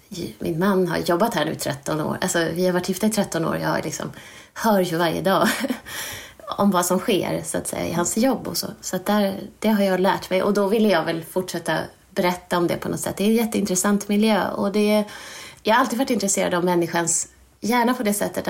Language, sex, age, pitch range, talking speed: Swedish, female, 20-39, 185-230 Hz, 235 wpm